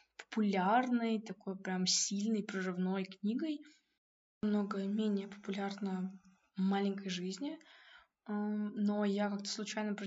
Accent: native